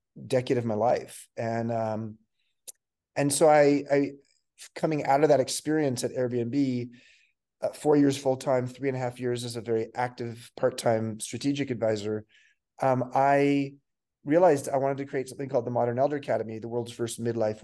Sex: male